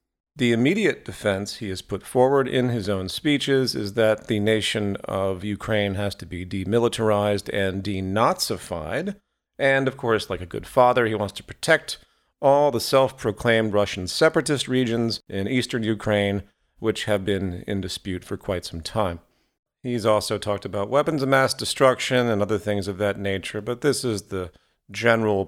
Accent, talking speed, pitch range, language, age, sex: American, 165 wpm, 100-125 Hz, English, 40-59, male